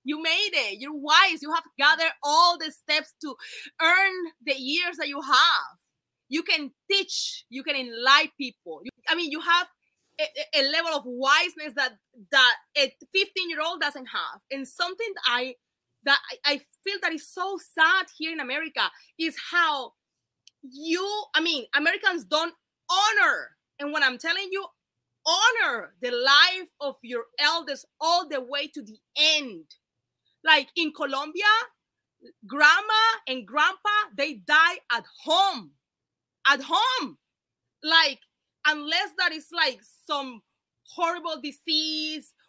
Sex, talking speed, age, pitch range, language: female, 140 wpm, 20-39, 280-350 Hz, English